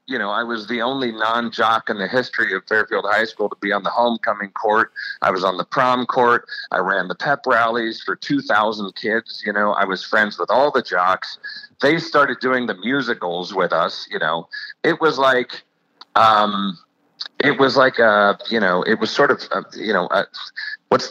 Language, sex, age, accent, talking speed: English, male, 40-59, American, 195 wpm